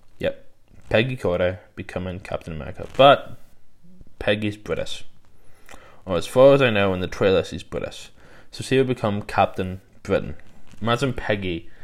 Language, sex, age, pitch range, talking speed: English, male, 20-39, 90-110 Hz, 135 wpm